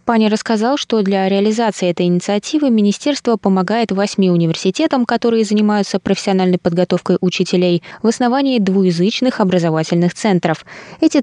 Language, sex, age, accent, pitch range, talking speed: Russian, female, 20-39, native, 180-230 Hz, 120 wpm